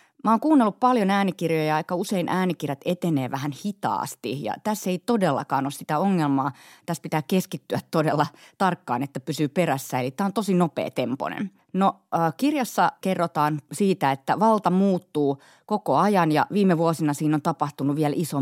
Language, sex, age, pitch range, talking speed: Finnish, female, 30-49, 140-180 Hz, 160 wpm